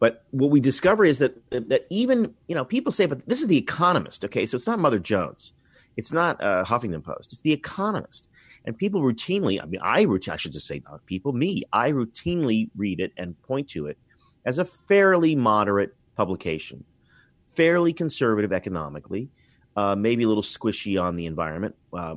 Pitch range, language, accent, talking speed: 90-135 Hz, English, American, 185 wpm